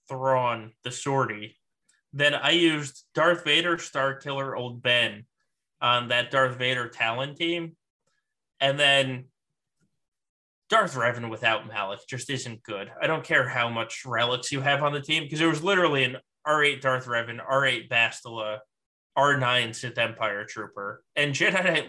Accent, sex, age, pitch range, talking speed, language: American, male, 20-39, 120-145 Hz, 150 wpm, English